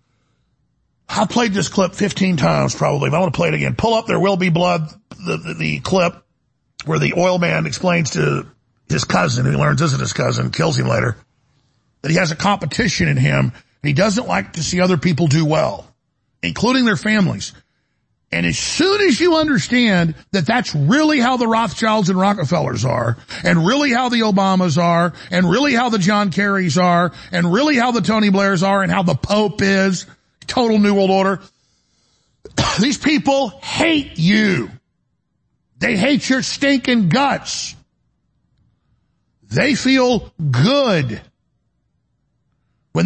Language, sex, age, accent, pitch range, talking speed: English, male, 50-69, American, 175-215 Hz, 165 wpm